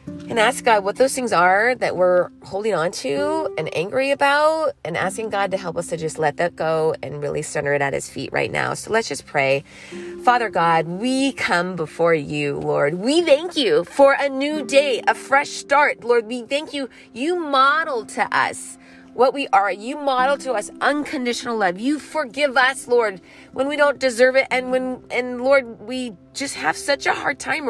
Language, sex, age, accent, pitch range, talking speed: English, female, 30-49, American, 200-285 Hz, 200 wpm